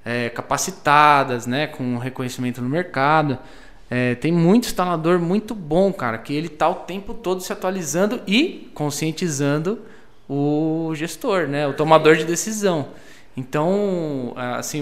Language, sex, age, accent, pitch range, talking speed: Portuguese, male, 20-39, Brazilian, 145-190 Hz, 130 wpm